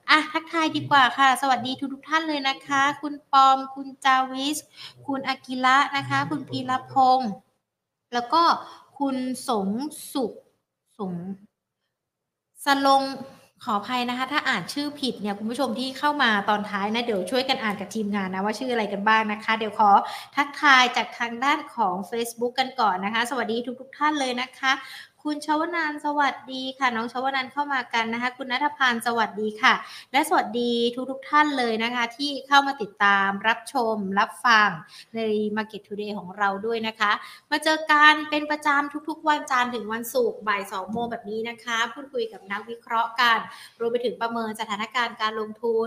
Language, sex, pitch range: Thai, female, 220-275 Hz